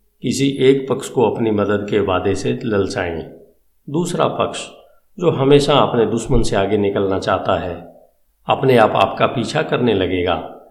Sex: male